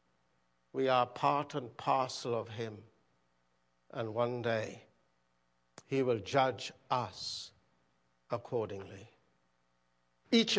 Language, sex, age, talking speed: English, male, 60-79, 90 wpm